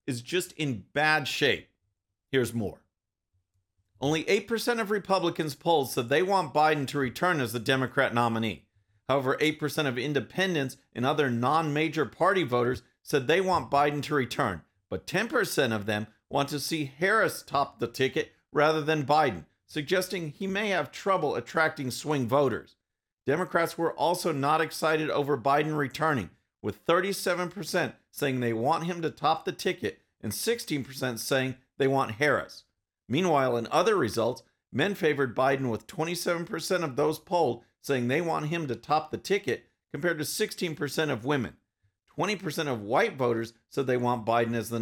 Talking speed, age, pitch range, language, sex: 160 wpm, 50-69, 120-165 Hz, English, male